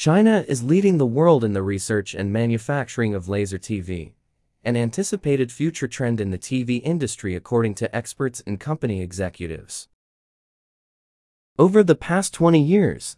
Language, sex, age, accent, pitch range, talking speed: English, male, 20-39, American, 105-150 Hz, 145 wpm